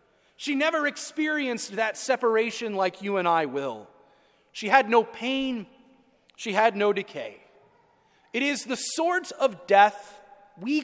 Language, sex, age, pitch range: English, male, 30-49, 205-280 Hz